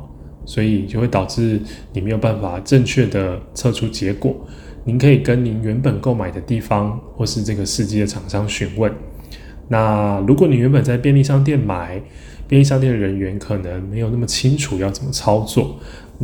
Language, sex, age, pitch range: Chinese, male, 10-29, 95-125 Hz